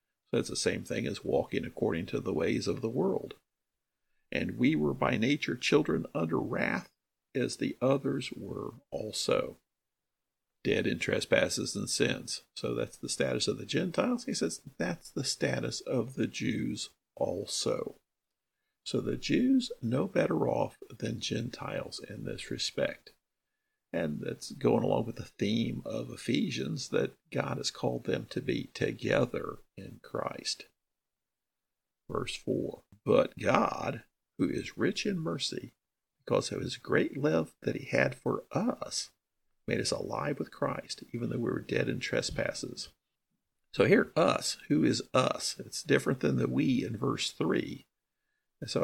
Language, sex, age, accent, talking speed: English, male, 50-69, American, 150 wpm